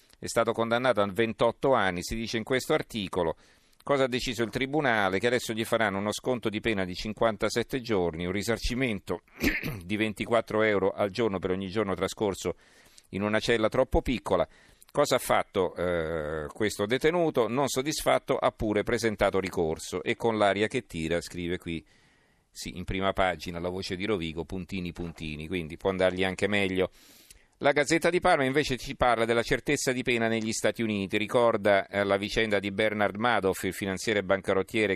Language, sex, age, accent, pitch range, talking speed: Italian, male, 50-69, native, 95-115 Hz, 170 wpm